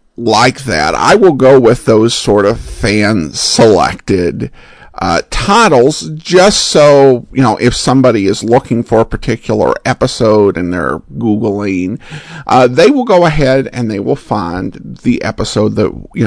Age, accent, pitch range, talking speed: 50-69, American, 110-160 Hz, 150 wpm